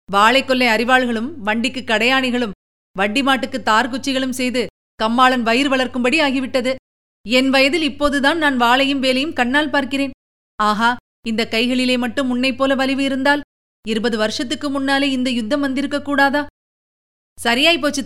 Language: Tamil